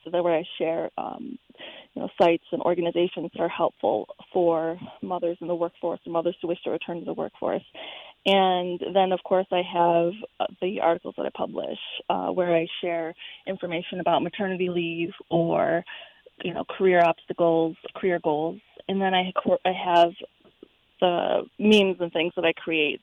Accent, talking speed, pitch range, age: American, 165 wpm, 175-215 Hz, 20-39